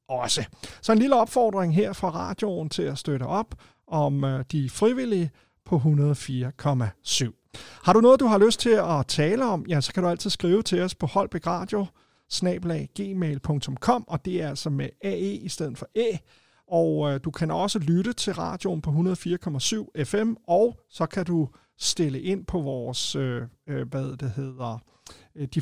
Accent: native